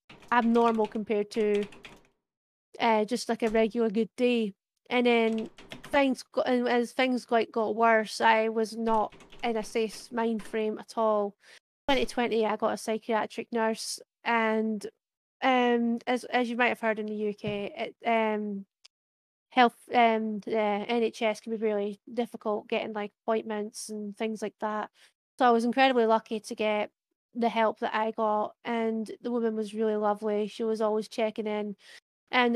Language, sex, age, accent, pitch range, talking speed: English, female, 30-49, British, 220-240 Hz, 170 wpm